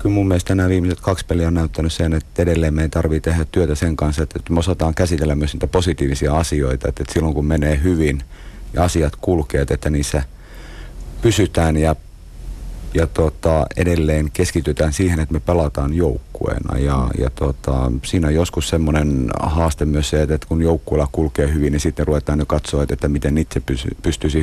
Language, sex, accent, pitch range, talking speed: Finnish, male, native, 70-85 Hz, 170 wpm